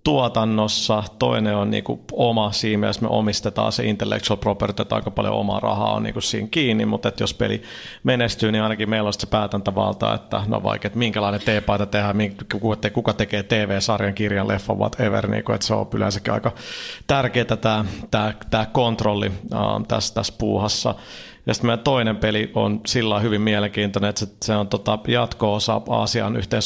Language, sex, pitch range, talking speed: Finnish, male, 105-115 Hz, 170 wpm